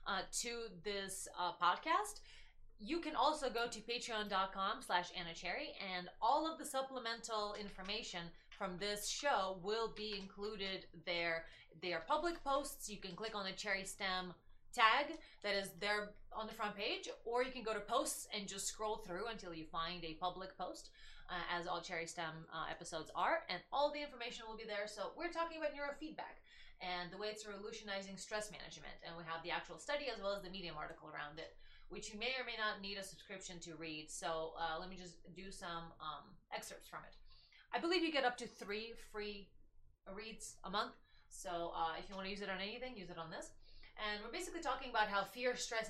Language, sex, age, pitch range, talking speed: English, female, 20-39, 175-230 Hz, 205 wpm